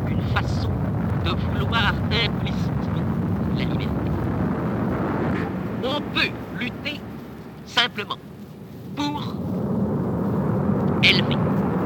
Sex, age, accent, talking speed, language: male, 50-69, French, 60 wpm, English